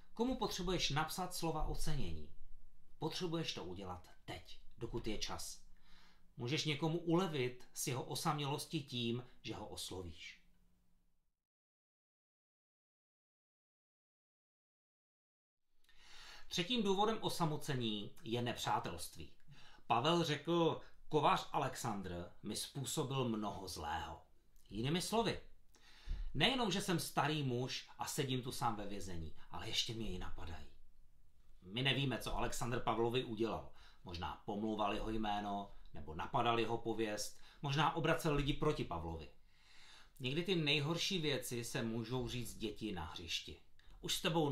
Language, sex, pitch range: Czech, male, 90-150 Hz